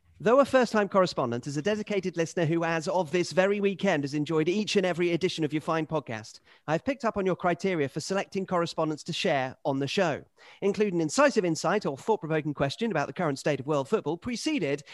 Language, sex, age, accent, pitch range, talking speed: English, male, 40-59, British, 150-210 Hz, 210 wpm